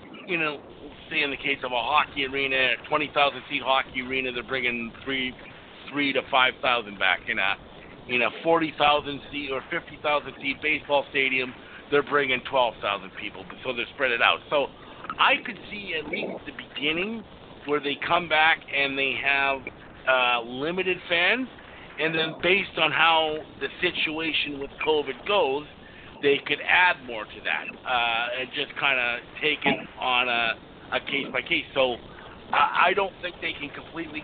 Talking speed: 165 wpm